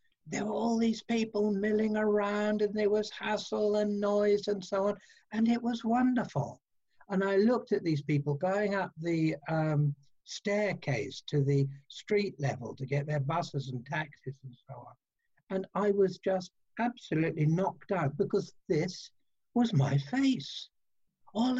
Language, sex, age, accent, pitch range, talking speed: English, male, 60-79, British, 140-210 Hz, 160 wpm